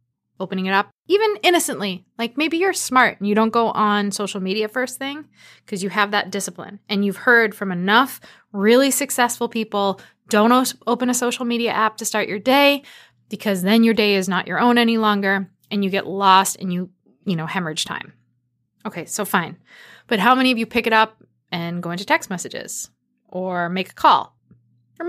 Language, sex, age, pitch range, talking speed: English, female, 20-39, 195-250 Hz, 195 wpm